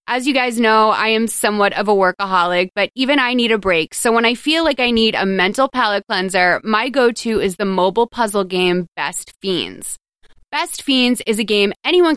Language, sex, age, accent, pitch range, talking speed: English, female, 20-39, American, 195-245 Hz, 210 wpm